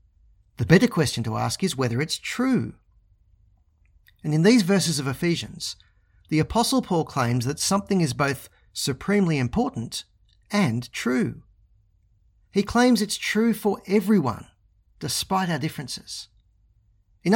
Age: 40-59